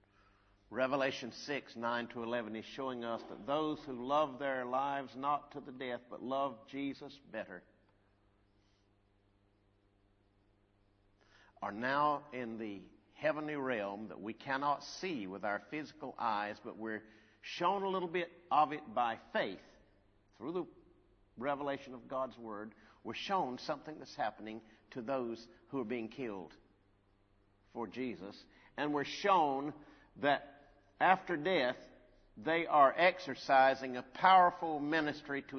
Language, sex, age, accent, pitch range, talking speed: English, male, 60-79, American, 100-135 Hz, 130 wpm